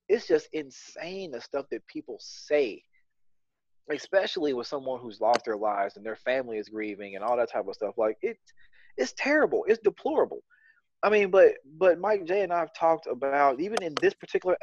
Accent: American